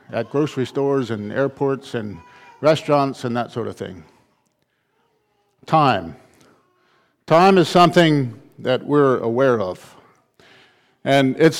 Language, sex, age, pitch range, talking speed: English, male, 50-69, 130-170 Hz, 115 wpm